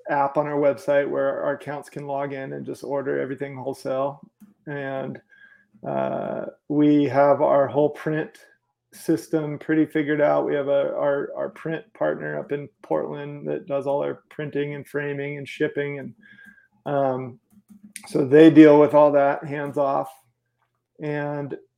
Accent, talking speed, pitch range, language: American, 155 wpm, 140-165 Hz, English